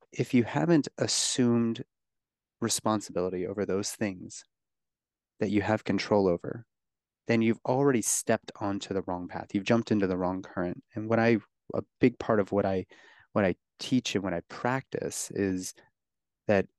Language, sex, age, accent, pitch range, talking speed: English, male, 30-49, American, 100-125 Hz, 160 wpm